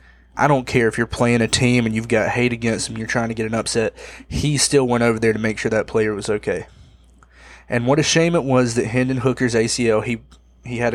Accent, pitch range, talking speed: American, 105-125 Hz, 245 wpm